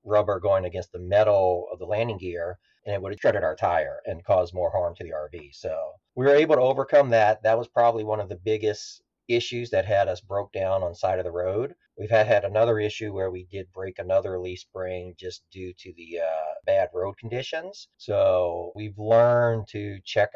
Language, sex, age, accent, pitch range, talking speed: English, male, 40-59, American, 90-115 Hz, 220 wpm